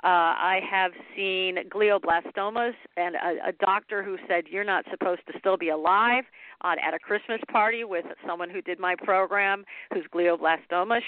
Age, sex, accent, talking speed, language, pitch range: 50-69, female, American, 170 wpm, English, 170-205 Hz